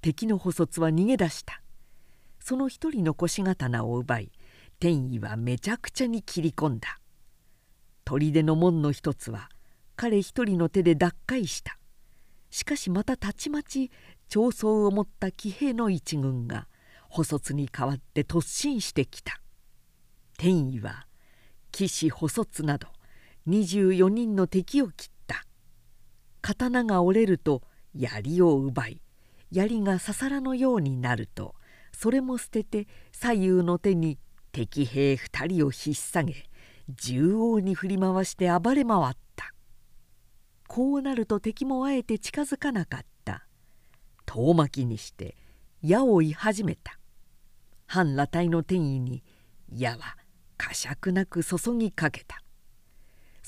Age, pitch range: 50-69, 130-210 Hz